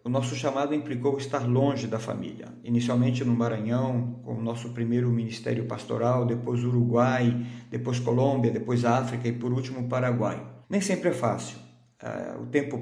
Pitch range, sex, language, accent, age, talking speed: 120-135 Hz, male, Portuguese, Brazilian, 50-69, 155 wpm